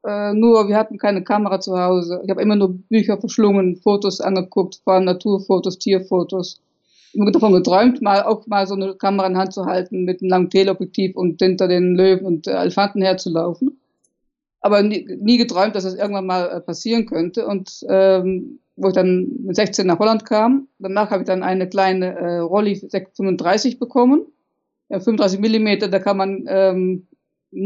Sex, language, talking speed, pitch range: female, German, 180 wpm, 185-220 Hz